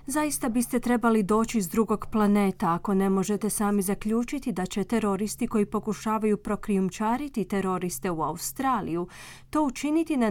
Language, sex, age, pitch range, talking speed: Croatian, female, 30-49, 190-235 Hz, 140 wpm